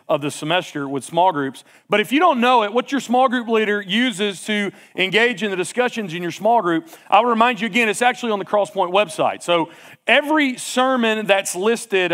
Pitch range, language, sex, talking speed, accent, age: 195-255 Hz, English, male, 210 wpm, American, 40-59